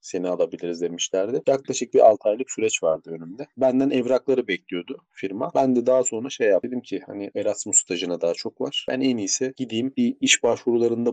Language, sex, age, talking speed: Turkish, male, 30-49, 190 wpm